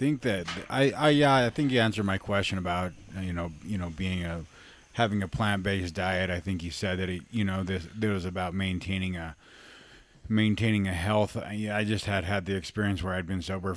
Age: 30-49